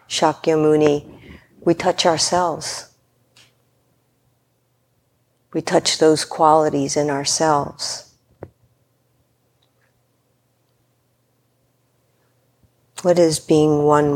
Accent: American